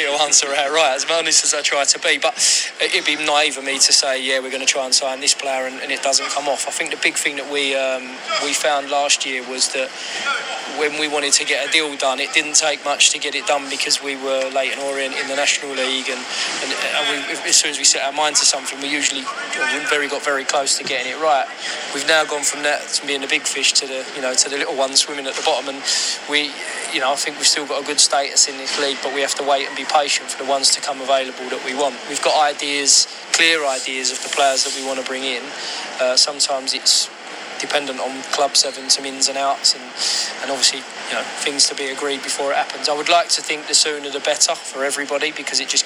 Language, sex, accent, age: English, male, British, 20-39